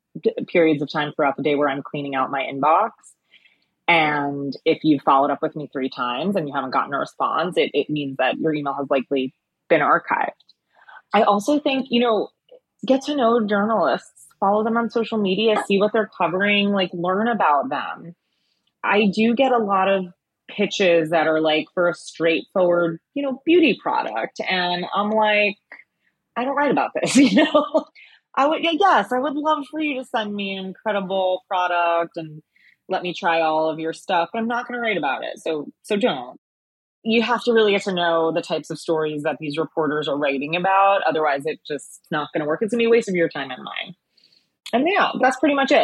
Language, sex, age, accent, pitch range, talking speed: English, female, 30-49, American, 155-220 Hz, 210 wpm